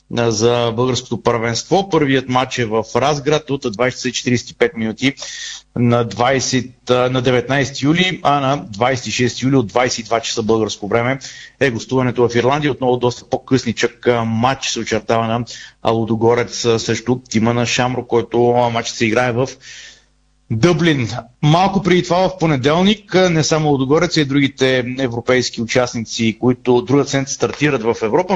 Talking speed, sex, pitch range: 135 wpm, male, 115-135 Hz